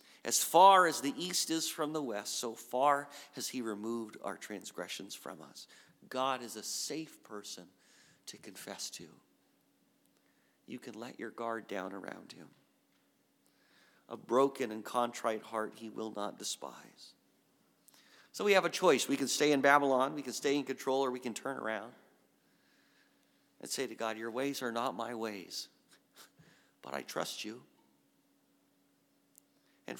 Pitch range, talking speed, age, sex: 110-140 Hz, 155 wpm, 40-59, male